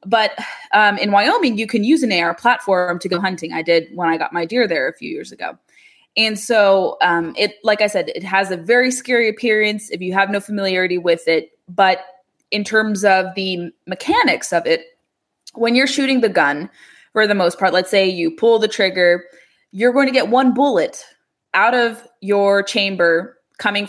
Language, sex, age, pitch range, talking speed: English, female, 20-39, 185-245 Hz, 200 wpm